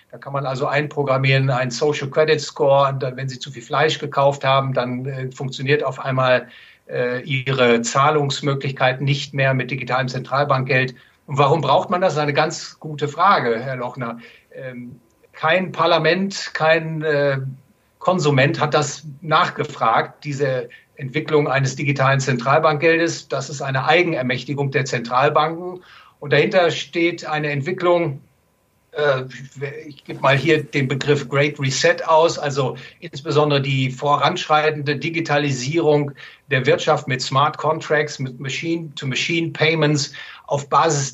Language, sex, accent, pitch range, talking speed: German, male, German, 135-155 Hz, 135 wpm